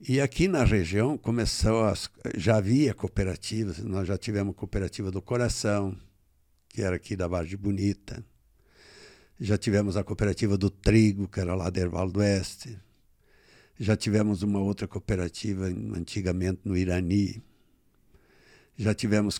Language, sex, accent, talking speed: Portuguese, male, Brazilian, 140 wpm